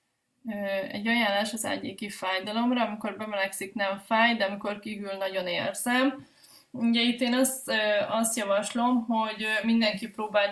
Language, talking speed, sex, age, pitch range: Hungarian, 130 wpm, female, 20-39, 205-235 Hz